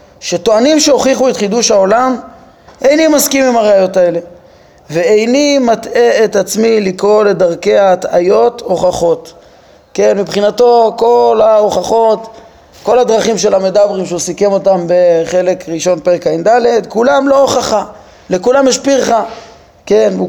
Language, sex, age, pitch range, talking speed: Hebrew, male, 20-39, 190-255 Hz, 120 wpm